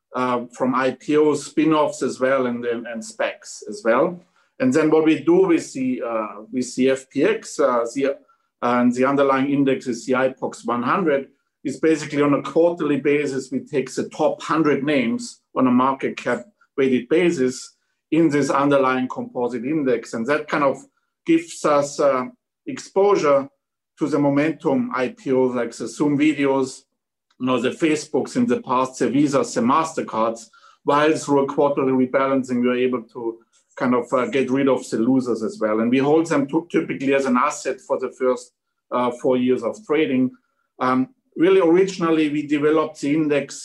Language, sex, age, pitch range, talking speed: English, male, 50-69, 130-160 Hz, 175 wpm